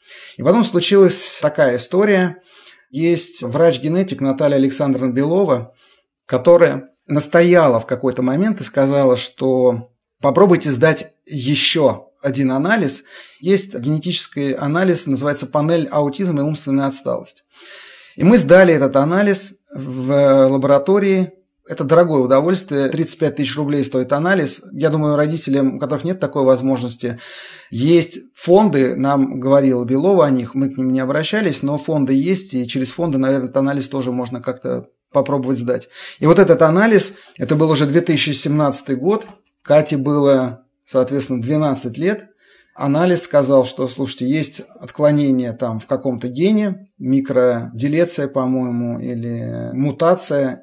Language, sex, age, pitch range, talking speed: Russian, male, 30-49, 135-170 Hz, 130 wpm